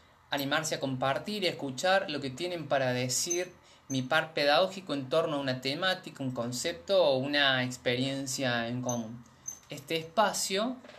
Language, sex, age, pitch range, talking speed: Spanish, male, 20-39, 130-170 Hz, 155 wpm